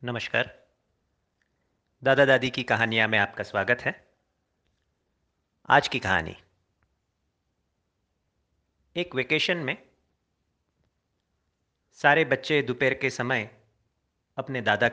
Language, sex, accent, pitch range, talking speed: Hindi, male, native, 95-135 Hz, 90 wpm